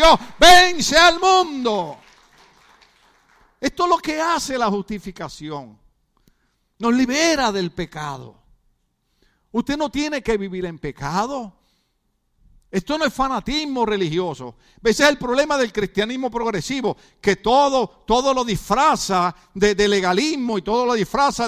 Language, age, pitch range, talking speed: Spanish, 50-69, 195-260 Hz, 130 wpm